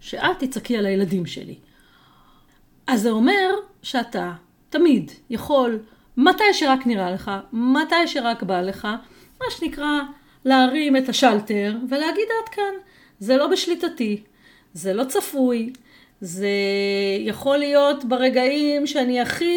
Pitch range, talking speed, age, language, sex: 205-295 Hz, 120 wpm, 30-49, Hebrew, female